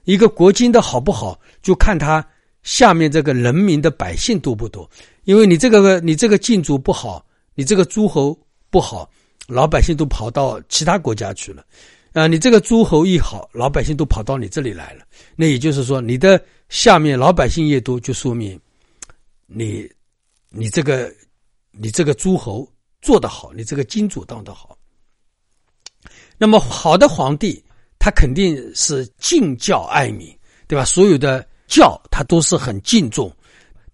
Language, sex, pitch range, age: Chinese, male, 125-190 Hz, 60-79